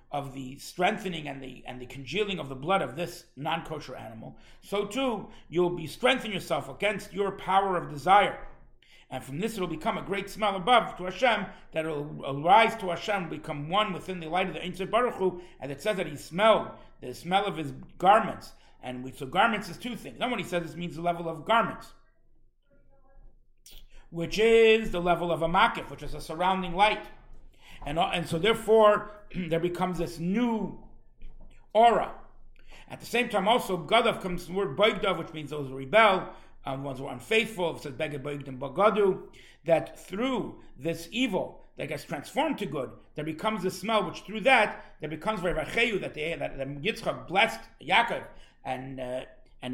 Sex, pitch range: male, 155-210 Hz